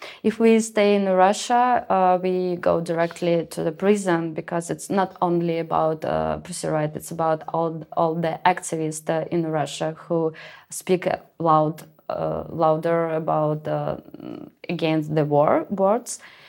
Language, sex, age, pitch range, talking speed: German, female, 20-39, 160-185 Hz, 145 wpm